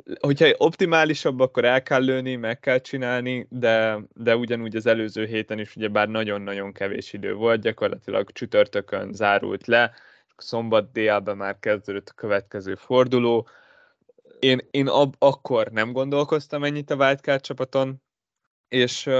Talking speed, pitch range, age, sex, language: 140 wpm, 110-140 Hz, 20-39, male, Hungarian